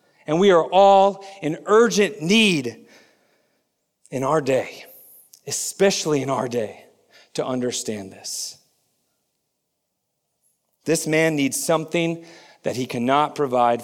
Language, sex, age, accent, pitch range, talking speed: English, male, 40-59, American, 130-195 Hz, 110 wpm